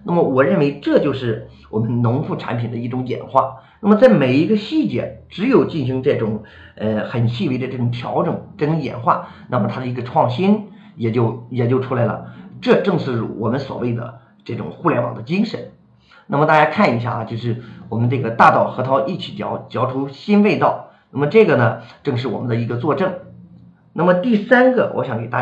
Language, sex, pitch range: Chinese, male, 115-175 Hz